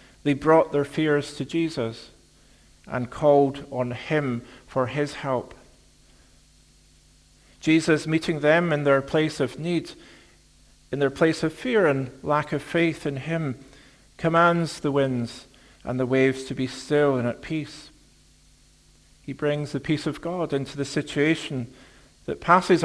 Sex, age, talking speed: male, 50-69, 145 wpm